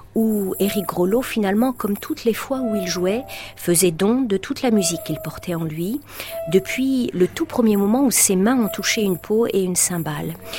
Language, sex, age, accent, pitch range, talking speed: French, female, 50-69, French, 180-235 Hz, 205 wpm